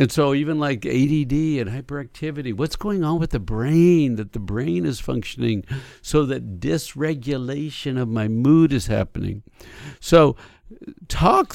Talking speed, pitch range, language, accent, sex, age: 145 wpm, 115-150 Hz, English, American, male, 60-79